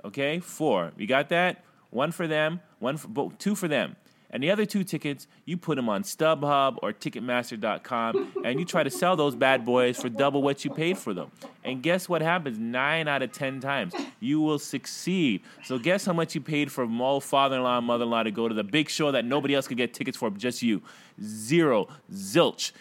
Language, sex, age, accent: English, male, 20-39, American